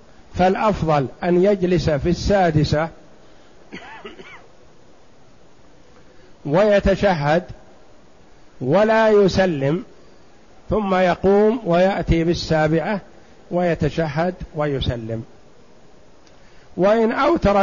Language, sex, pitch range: Arabic, male, 150-190 Hz